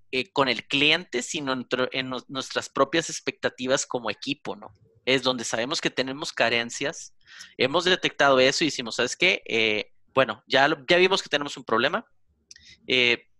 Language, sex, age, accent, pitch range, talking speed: Spanish, male, 30-49, Mexican, 115-140 Hz, 150 wpm